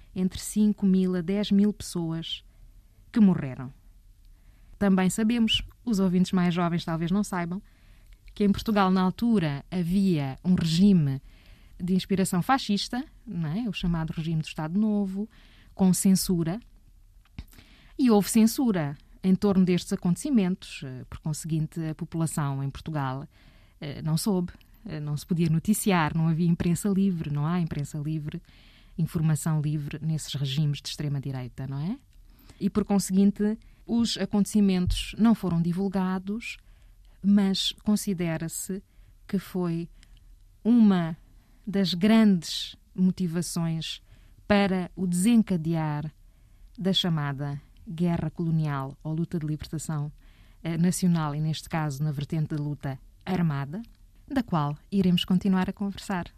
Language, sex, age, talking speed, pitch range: Portuguese, female, 20-39, 125 wpm, 150-195 Hz